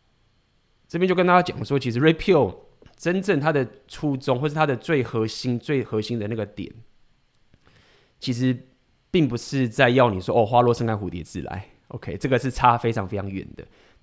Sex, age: male, 20-39